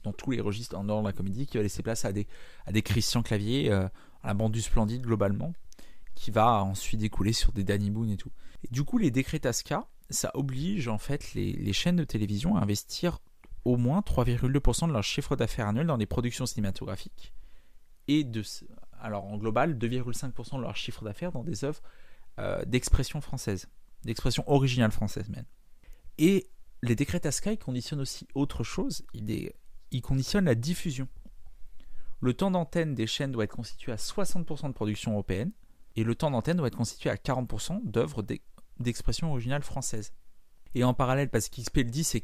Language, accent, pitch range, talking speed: French, French, 105-140 Hz, 190 wpm